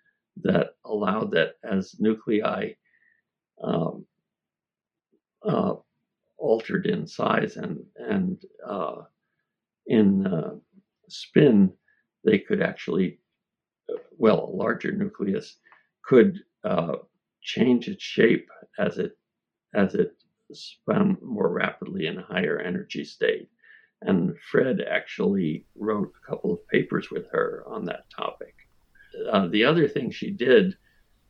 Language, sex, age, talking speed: English, male, 60-79, 115 wpm